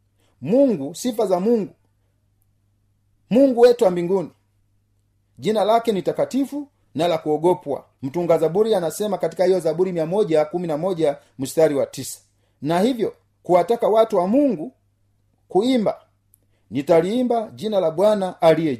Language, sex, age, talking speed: Swahili, male, 40-59, 120 wpm